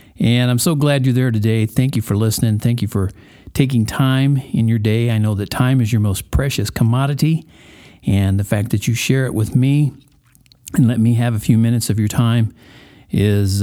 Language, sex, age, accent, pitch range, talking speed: English, male, 50-69, American, 100-130 Hz, 210 wpm